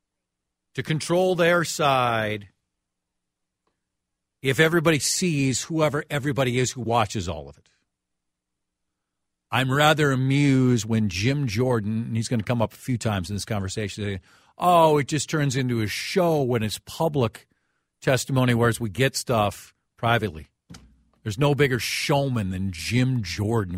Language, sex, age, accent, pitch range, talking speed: English, male, 50-69, American, 105-160 Hz, 140 wpm